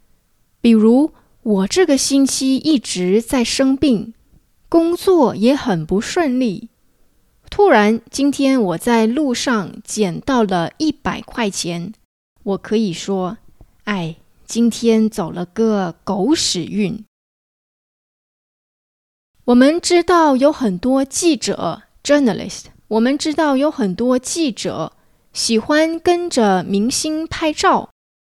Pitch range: 205-295 Hz